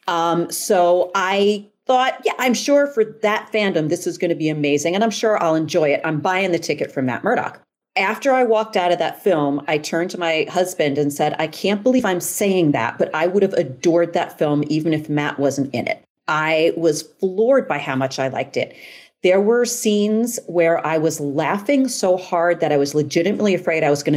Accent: American